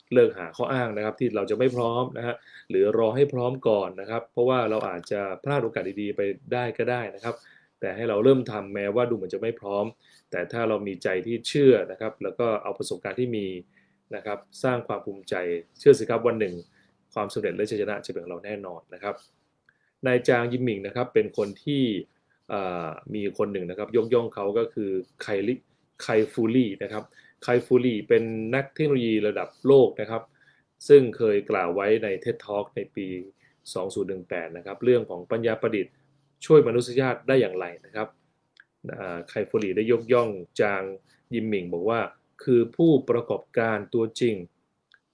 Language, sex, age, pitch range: Thai, male, 20-39, 100-125 Hz